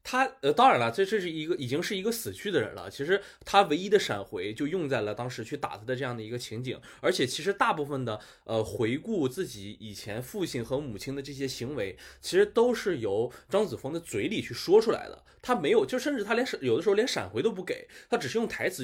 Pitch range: 120-200 Hz